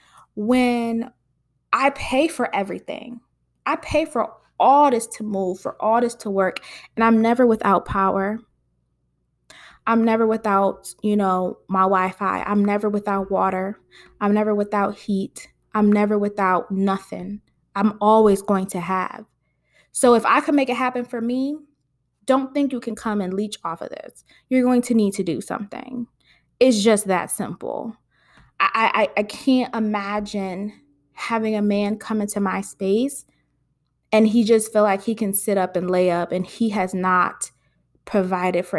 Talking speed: 165 wpm